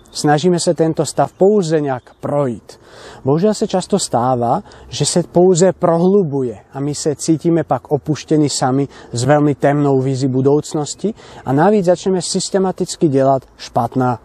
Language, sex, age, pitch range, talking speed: Czech, male, 30-49, 130-170 Hz, 140 wpm